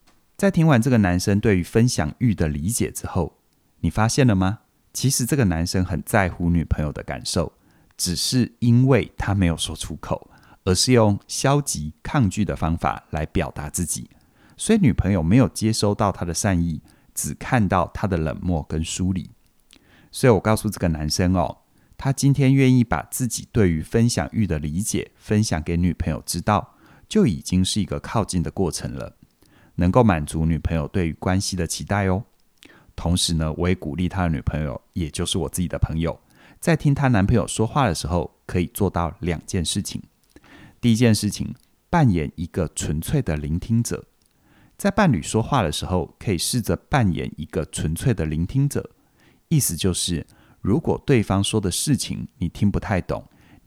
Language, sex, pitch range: Chinese, male, 85-115 Hz